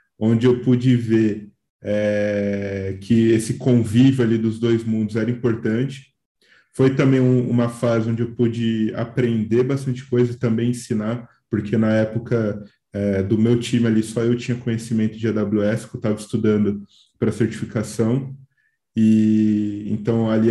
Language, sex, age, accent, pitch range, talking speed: Portuguese, male, 10-29, Brazilian, 110-125 Hz, 150 wpm